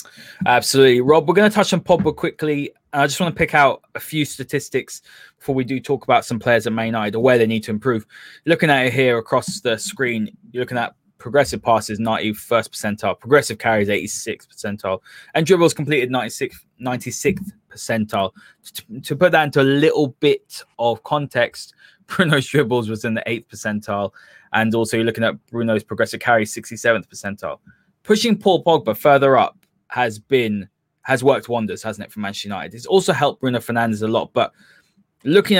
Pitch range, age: 115-155 Hz, 20-39